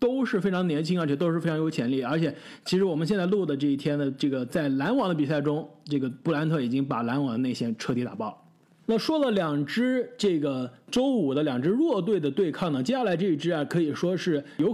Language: Chinese